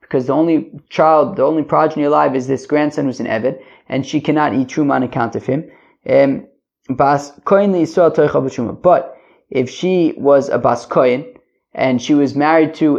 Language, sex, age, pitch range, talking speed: English, male, 20-39, 130-170 Hz, 155 wpm